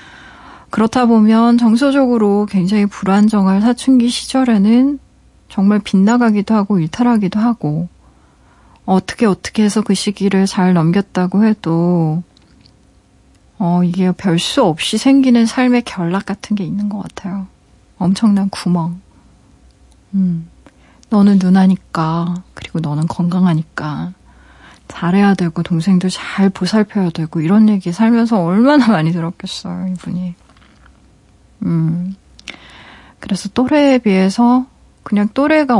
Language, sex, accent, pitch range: Korean, female, native, 175-230 Hz